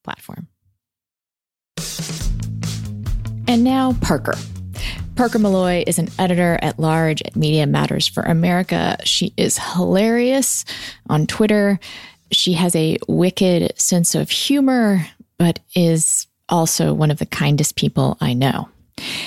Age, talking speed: 30-49, 120 wpm